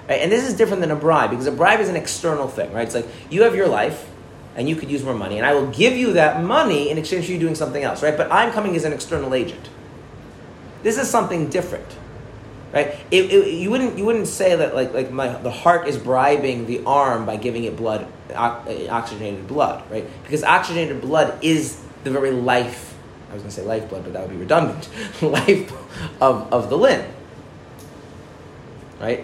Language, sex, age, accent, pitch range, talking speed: English, male, 30-49, American, 120-160 Hz, 210 wpm